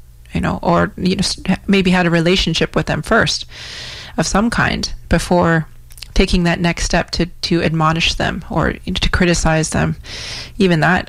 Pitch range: 160-190 Hz